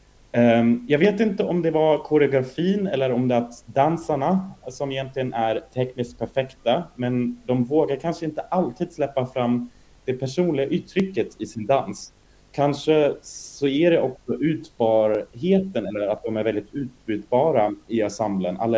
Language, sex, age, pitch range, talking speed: Swedish, male, 30-49, 115-145 Hz, 145 wpm